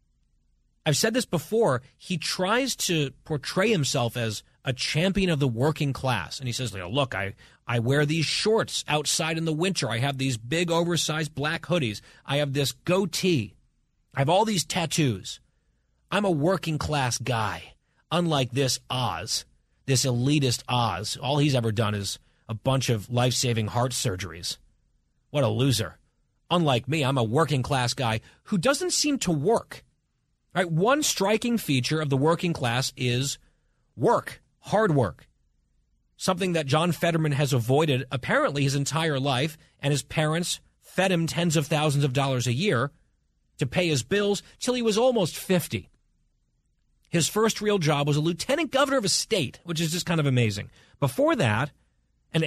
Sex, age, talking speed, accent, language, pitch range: male, 30-49, 165 wpm, American, English, 125-170 Hz